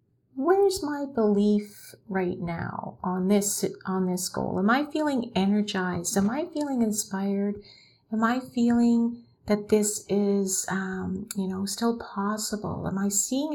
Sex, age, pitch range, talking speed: female, 50-69, 190-215 Hz, 140 wpm